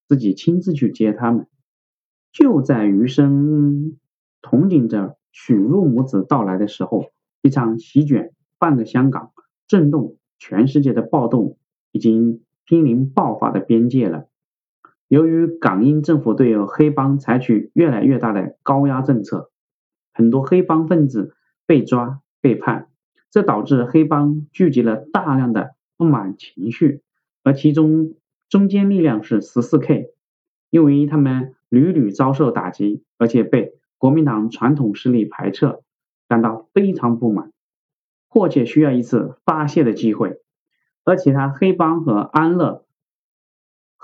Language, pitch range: Chinese, 115-155 Hz